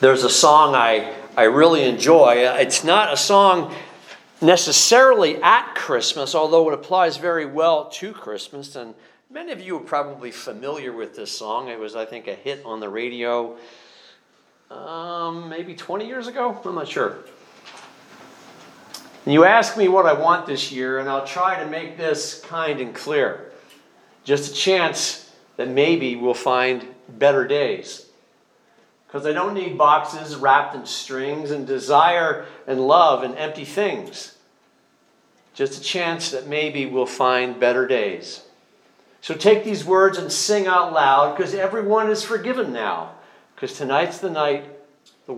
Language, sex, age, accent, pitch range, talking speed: English, male, 50-69, American, 130-190 Hz, 155 wpm